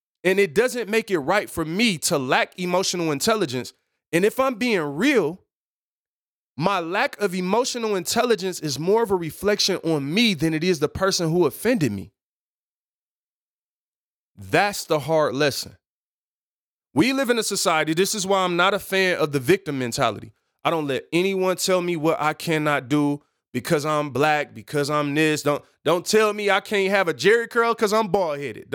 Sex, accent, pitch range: male, American, 145-215 Hz